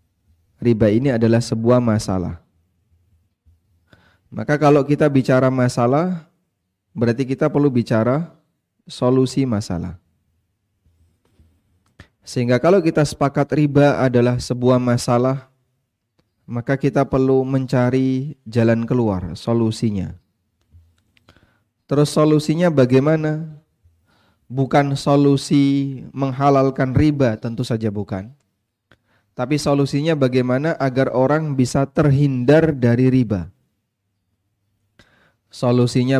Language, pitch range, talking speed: Indonesian, 110-145 Hz, 85 wpm